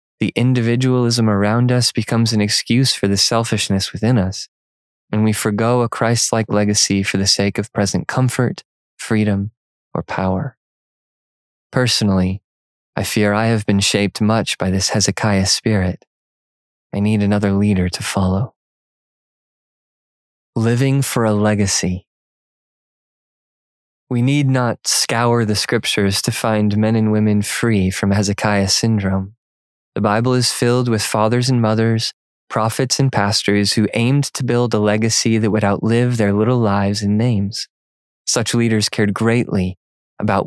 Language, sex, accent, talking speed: English, male, American, 140 wpm